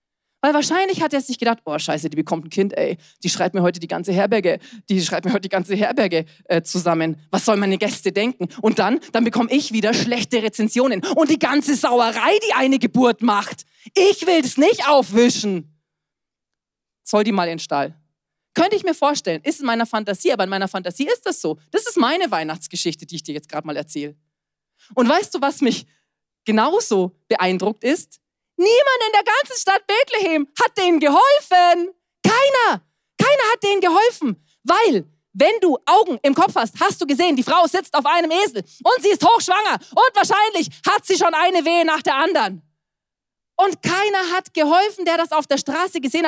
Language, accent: German, German